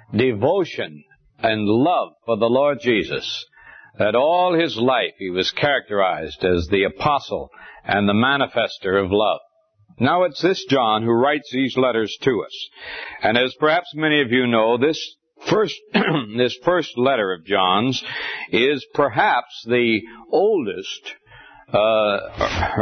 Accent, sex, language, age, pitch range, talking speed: American, male, English, 60-79, 110-150 Hz, 135 wpm